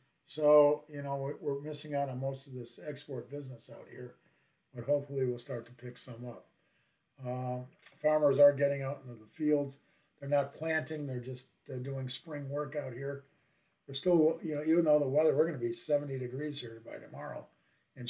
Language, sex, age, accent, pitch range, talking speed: English, male, 50-69, American, 125-150 Hz, 195 wpm